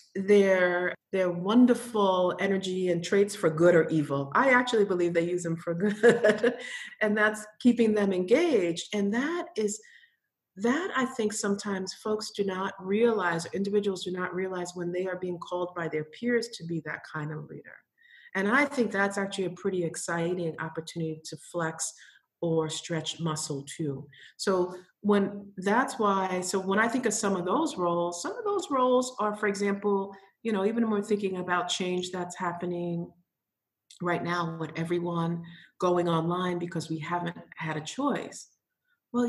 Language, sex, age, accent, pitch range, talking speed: English, female, 50-69, American, 175-225 Hz, 170 wpm